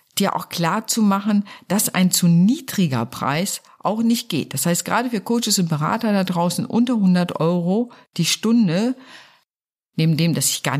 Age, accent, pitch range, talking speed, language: 50-69, German, 155-195 Hz, 165 wpm, German